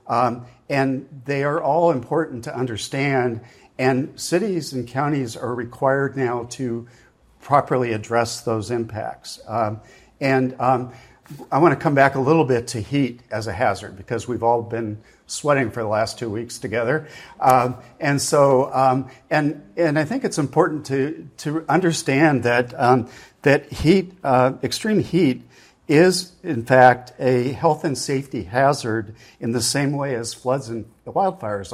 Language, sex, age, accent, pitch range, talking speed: English, male, 50-69, American, 120-140 Hz, 160 wpm